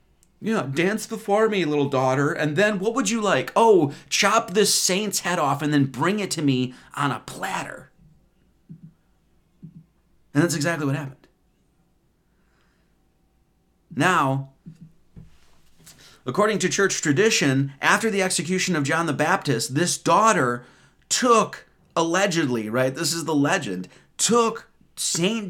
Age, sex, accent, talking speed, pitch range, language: 30-49, male, American, 130 wpm, 130-180 Hz, English